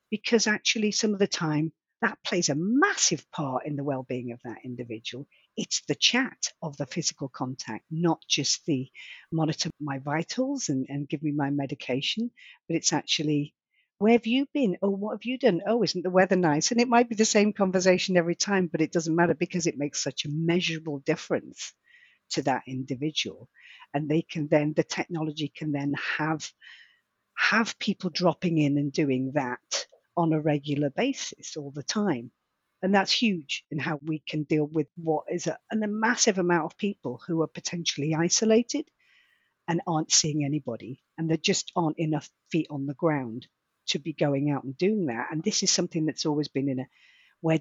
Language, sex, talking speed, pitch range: English, female, 190 wpm, 145-195 Hz